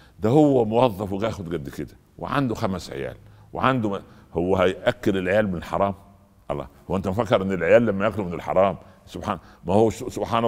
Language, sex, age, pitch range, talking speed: Arabic, male, 60-79, 100-135 Hz, 170 wpm